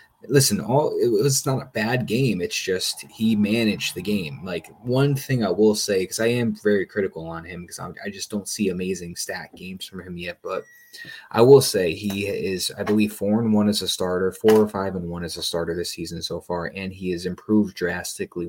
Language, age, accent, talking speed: English, 20-39, American, 225 wpm